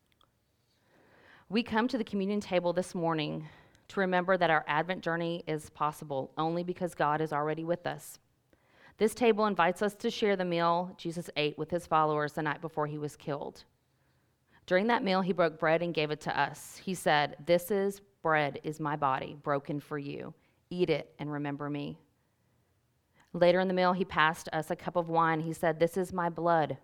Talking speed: 190 wpm